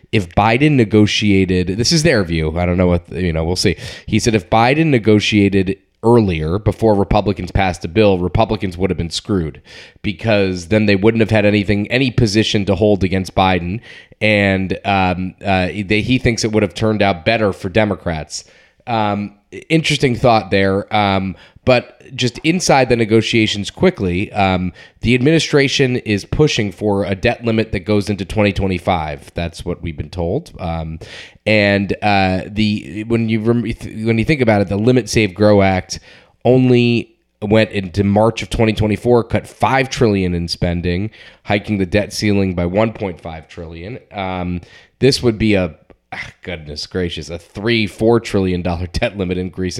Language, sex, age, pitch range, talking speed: English, male, 20-39, 90-110 Hz, 170 wpm